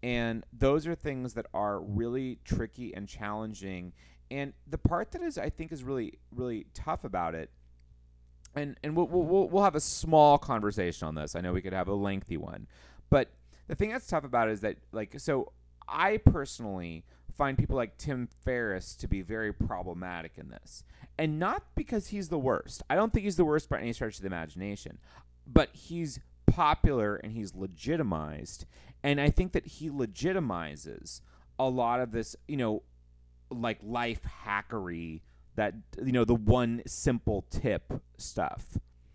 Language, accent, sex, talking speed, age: English, American, male, 175 wpm, 30-49